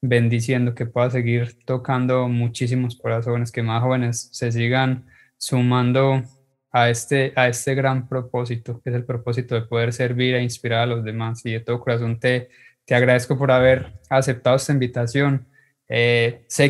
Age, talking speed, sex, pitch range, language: 20-39, 160 wpm, male, 120-130 Hz, Spanish